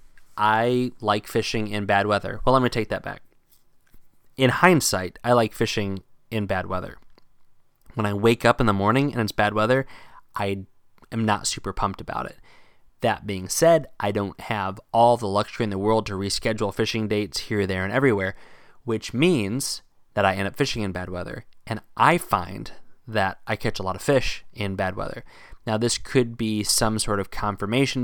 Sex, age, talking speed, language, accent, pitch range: male, 20-39, 190 wpm, English, American, 100-120 Hz